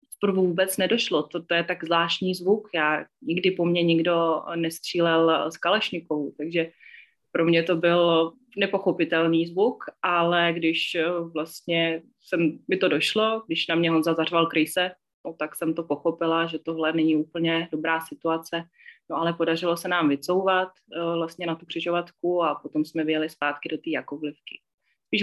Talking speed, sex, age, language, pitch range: 155 wpm, female, 30-49, Slovak, 160-180 Hz